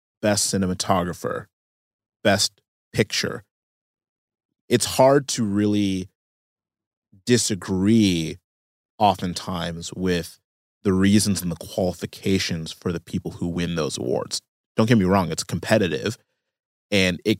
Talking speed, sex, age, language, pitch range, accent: 105 wpm, male, 30-49, English, 85-110 Hz, American